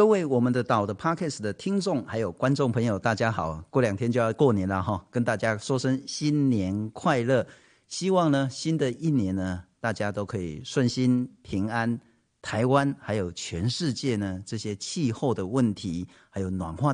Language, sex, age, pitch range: Chinese, male, 50-69, 105-155 Hz